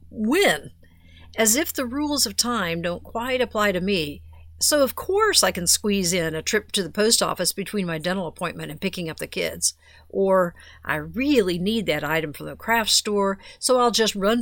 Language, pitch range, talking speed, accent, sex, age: English, 160-215 Hz, 200 wpm, American, female, 50-69